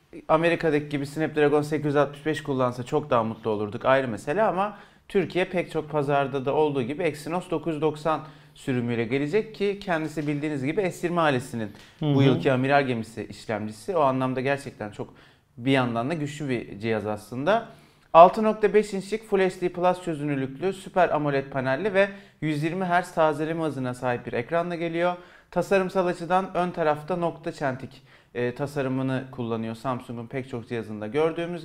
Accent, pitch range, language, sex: native, 140-180 Hz, Turkish, male